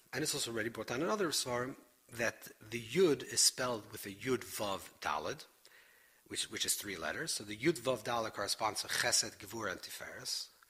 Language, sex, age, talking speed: English, male, 40-59, 190 wpm